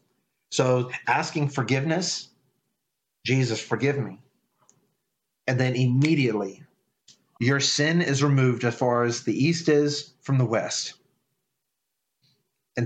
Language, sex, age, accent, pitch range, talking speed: English, male, 40-59, American, 125-155 Hz, 105 wpm